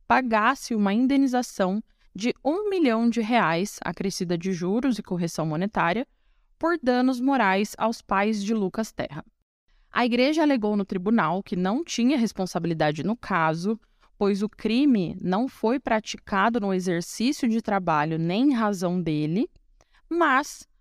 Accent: Brazilian